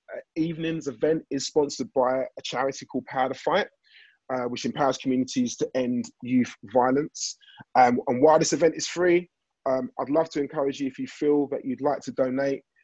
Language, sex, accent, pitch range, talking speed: English, male, British, 130-165 Hz, 190 wpm